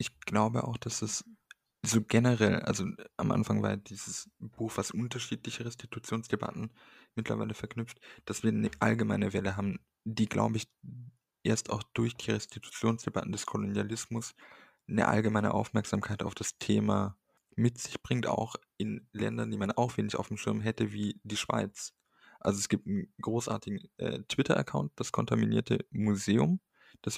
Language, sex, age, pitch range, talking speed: German, male, 20-39, 105-120 Hz, 150 wpm